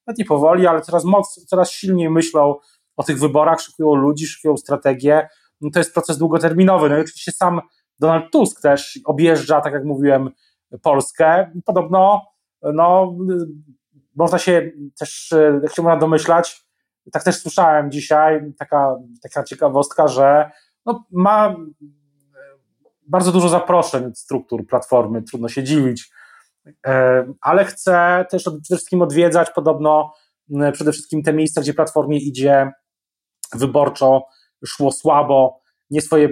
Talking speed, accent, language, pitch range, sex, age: 125 wpm, native, Polish, 135-165 Hz, male, 30-49